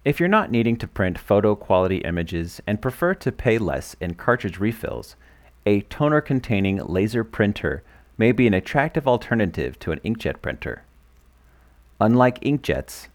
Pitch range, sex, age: 80-120 Hz, male, 40-59